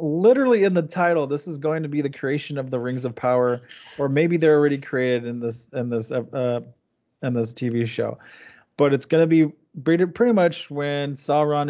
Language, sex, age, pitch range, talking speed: English, male, 20-39, 120-155 Hz, 200 wpm